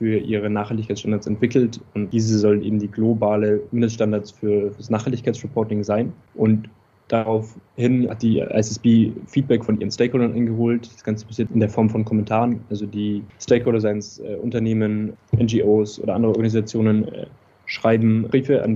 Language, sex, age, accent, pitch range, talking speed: German, male, 20-39, German, 105-115 Hz, 145 wpm